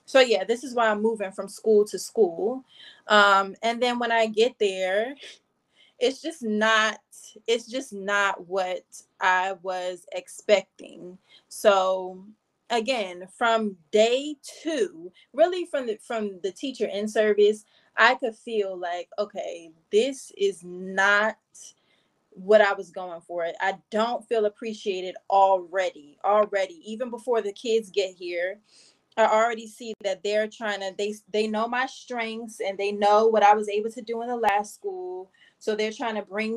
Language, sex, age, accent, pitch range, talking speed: English, female, 20-39, American, 195-230 Hz, 155 wpm